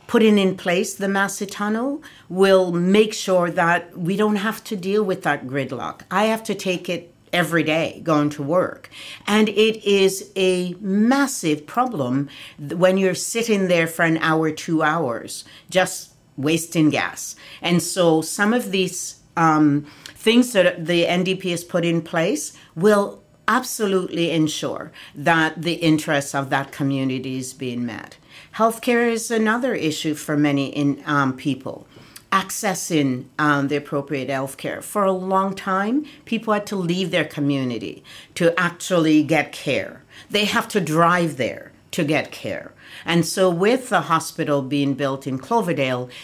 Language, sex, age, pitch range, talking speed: English, female, 60-79, 145-195 Hz, 150 wpm